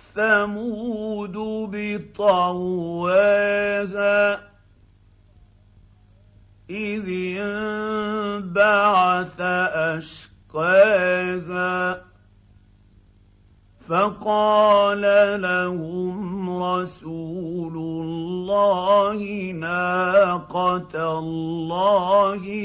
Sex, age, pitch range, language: male, 50-69, 135-185 Hz, Arabic